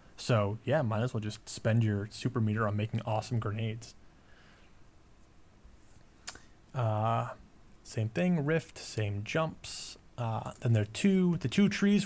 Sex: male